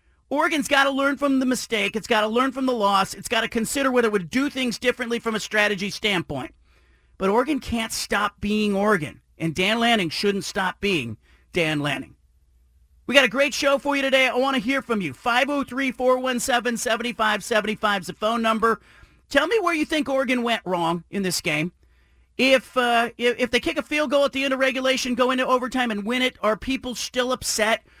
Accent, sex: American, male